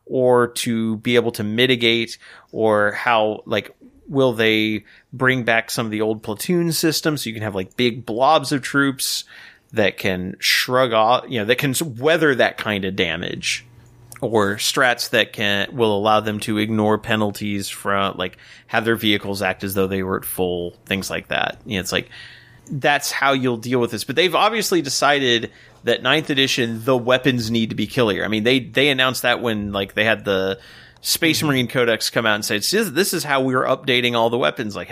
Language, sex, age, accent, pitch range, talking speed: English, male, 30-49, American, 105-135 Hz, 200 wpm